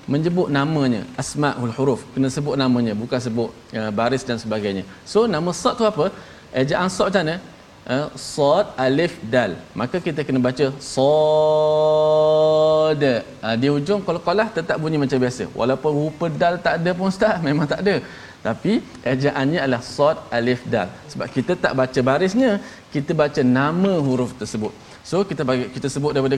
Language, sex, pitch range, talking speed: Malayalam, male, 120-160 Hz, 165 wpm